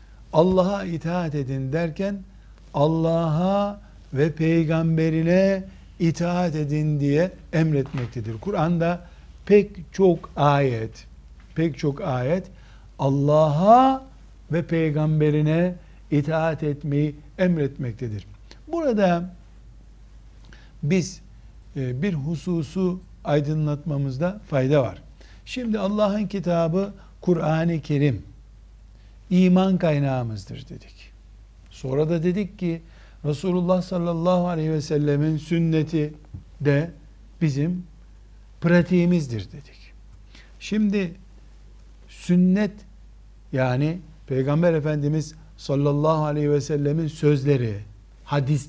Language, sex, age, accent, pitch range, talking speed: Turkish, male, 60-79, native, 140-175 Hz, 80 wpm